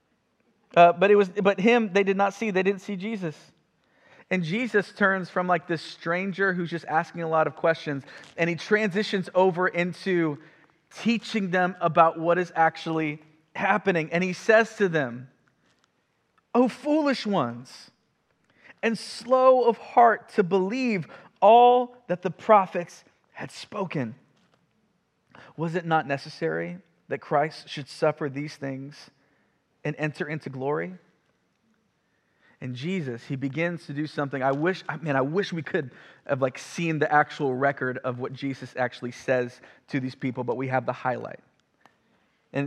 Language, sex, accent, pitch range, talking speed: English, male, American, 145-195 Hz, 155 wpm